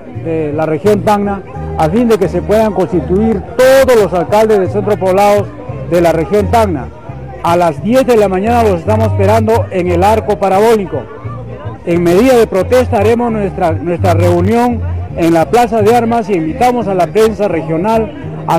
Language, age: Spanish, 60-79